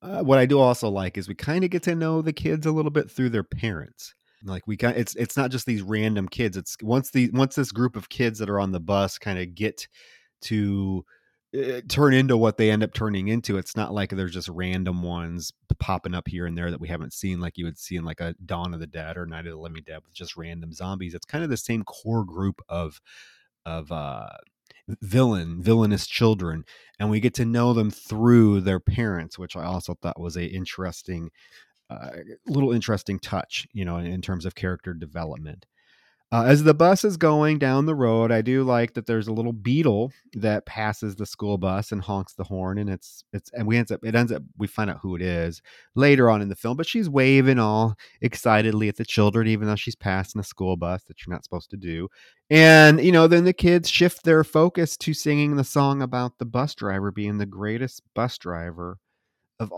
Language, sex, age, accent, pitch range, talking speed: English, male, 30-49, American, 90-125 Hz, 225 wpm